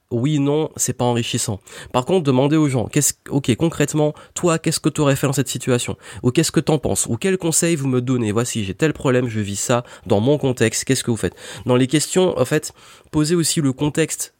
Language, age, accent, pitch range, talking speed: French, 20-39, French, 115-140 Hz, 230 wpm